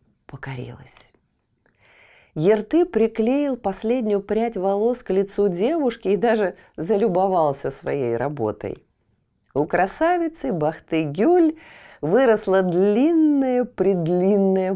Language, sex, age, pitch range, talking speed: Russian, female, 40-59, 145-225 Hz, 80 wpm